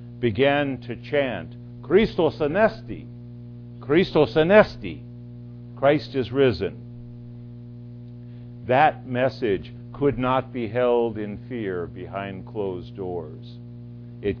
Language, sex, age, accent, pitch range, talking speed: English, male, 60-79, American, 120-130 Hz, 90 wpm